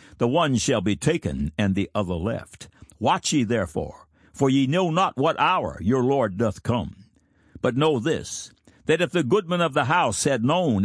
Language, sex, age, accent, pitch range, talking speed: English, male, 60-79, American, 105-150 Hz, 190 wpm